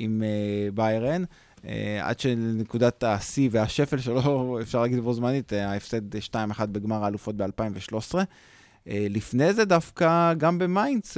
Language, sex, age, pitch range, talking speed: Hebrew, male, 20-39, 110-140 Hz, 115 wpm